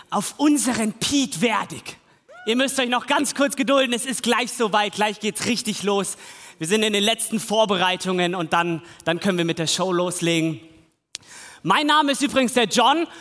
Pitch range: 175-240 Hz